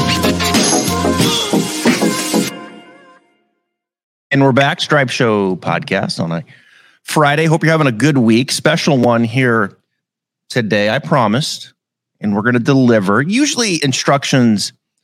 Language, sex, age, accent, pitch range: English, male, 30-49, American, 110-135 Hz